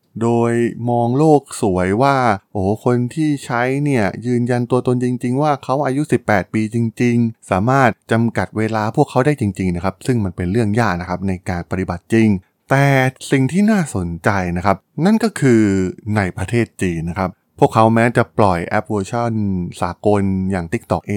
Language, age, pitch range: Thai, 20-39, 90-120 Hz